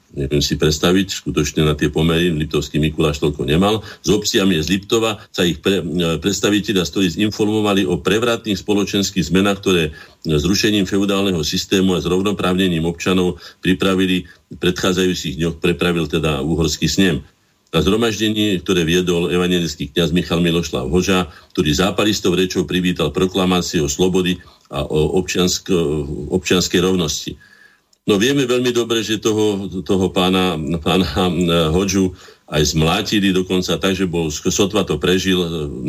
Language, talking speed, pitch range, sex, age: Slovak, 130 wpm, 90-105 Hz, male, 50-69